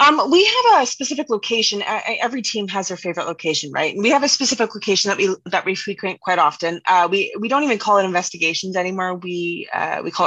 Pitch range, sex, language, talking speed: 175-210 Hz, female, English, 235 wpm